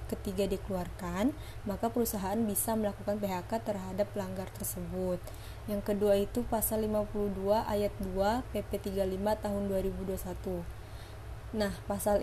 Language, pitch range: Indonesian, 190-215 Hz